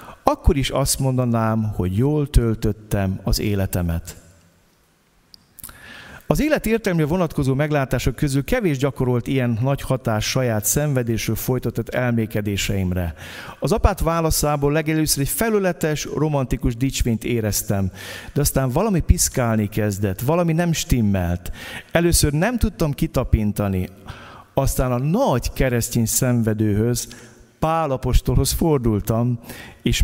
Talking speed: 110 wpm